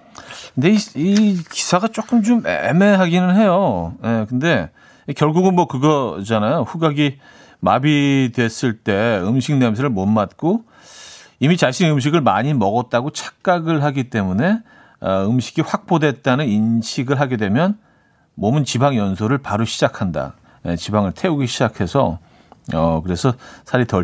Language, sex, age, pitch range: Korean, male, 40-59, 110-155 Hz